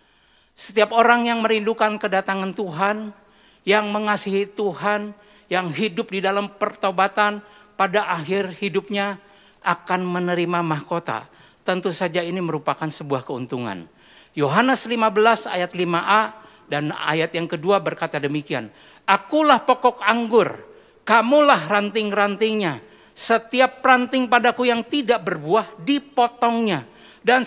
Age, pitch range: 50-69, 180-230 Hz